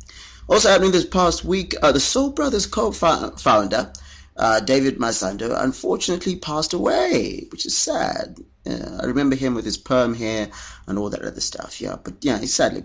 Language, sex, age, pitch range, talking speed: English, male, 30-49, 110-165 Hz, 175 wpm